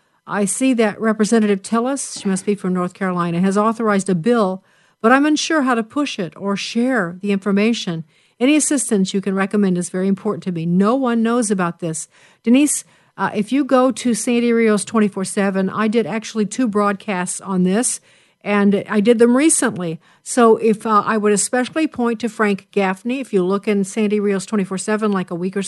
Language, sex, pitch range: English, female, 195-225 Hz